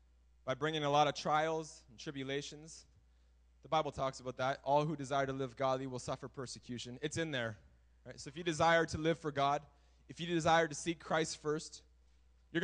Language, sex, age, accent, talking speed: English, male, 20-39, American, 195 wpm